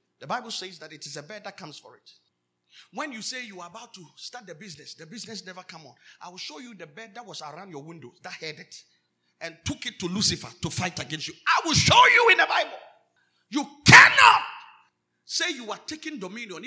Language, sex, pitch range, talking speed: English, male, 155-230 Hz, 230 wpm